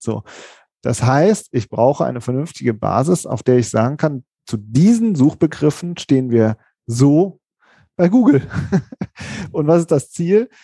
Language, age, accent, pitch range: German, 40-59, German, 130-175 Hz